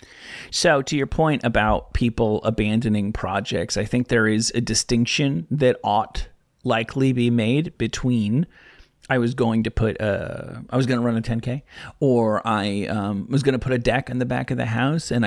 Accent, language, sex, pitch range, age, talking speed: American, English, male, 110-130 Hz, 30-49, 195 wpm